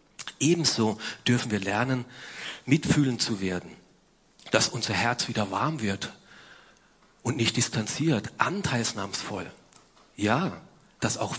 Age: 40-59